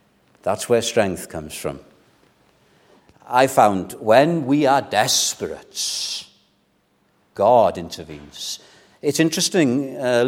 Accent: British